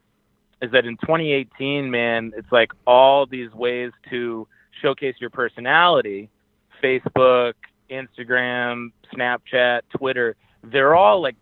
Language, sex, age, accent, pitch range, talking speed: English, male, 30-49, American, 120-140 Hz, 110 wpm